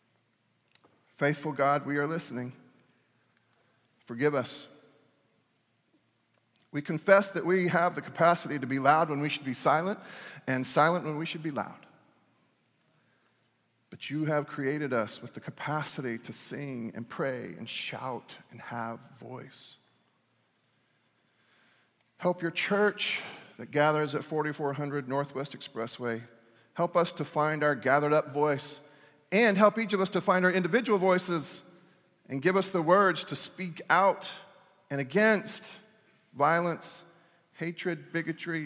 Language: English